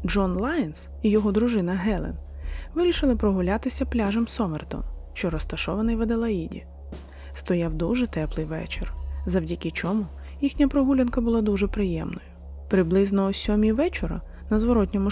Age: 20-39